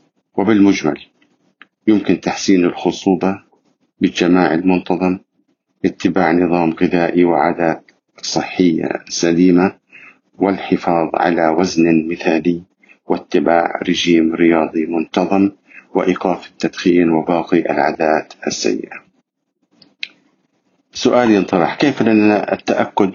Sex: male